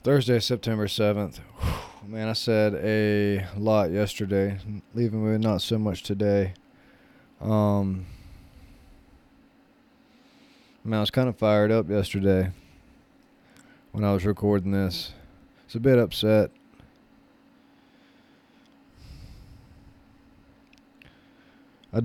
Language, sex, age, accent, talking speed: English, male, 20-39, American, 95 wpm